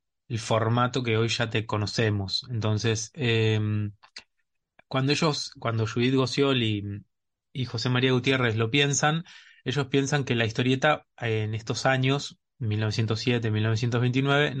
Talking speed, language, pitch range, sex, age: 125 wpm, Spanish, 110-125 Hz, male, 20-39